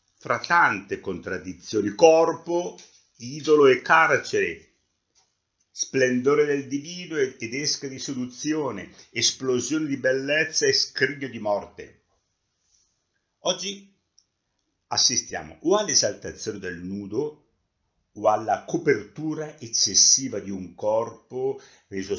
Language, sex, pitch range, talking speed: Italian, male, 95-150 Hz, 90 wpm